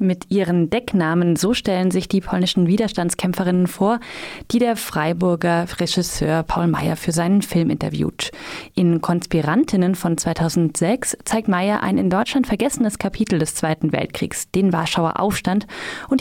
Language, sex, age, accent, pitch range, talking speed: German, female, 30-49, German, 165-220 Hz, 140 wpm